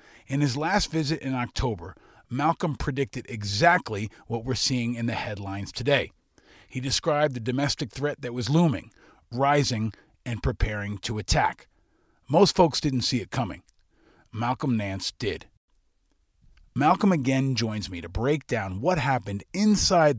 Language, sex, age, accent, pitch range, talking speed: English, male, 40-59, American, 105-150 Hz, 145 wpm